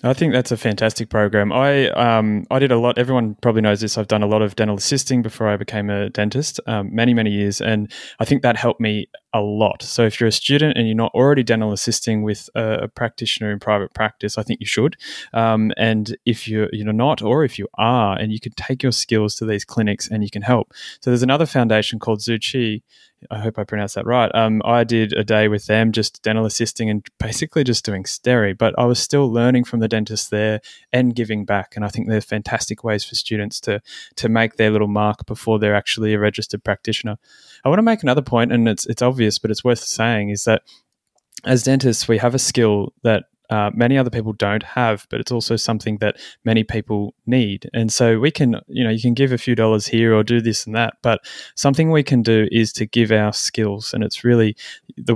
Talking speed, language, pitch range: 235 wpm, English, 105-120 Hz